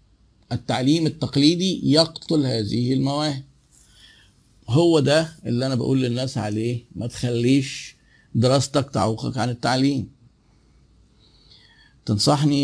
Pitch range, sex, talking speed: 120-150 Hz, male, 90 wpm